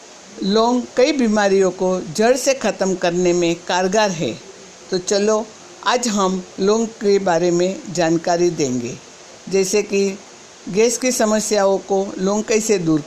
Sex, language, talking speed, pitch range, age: female, Hindi, 140 wpm, 180-210 Hz, 60-79